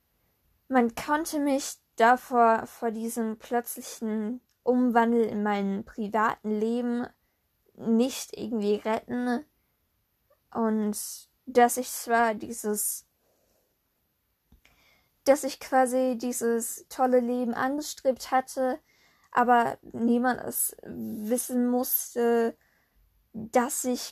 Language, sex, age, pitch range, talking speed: German, female, 10-29, 220-255 Hz, 85 wpm